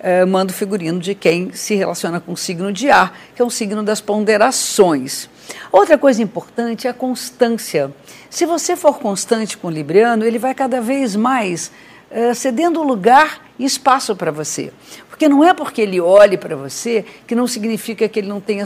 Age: 50-69